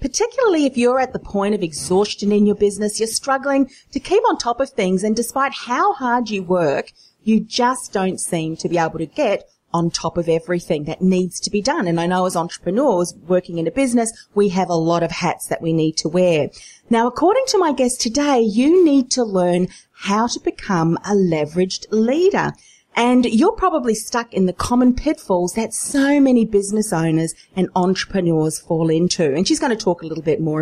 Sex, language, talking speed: female, English, 205 wpm